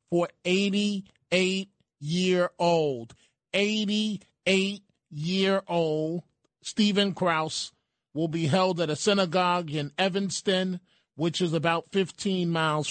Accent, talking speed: American, 85 wpm